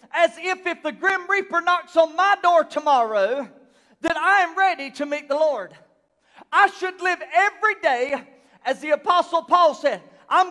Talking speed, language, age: 170 wpm, English, 40-59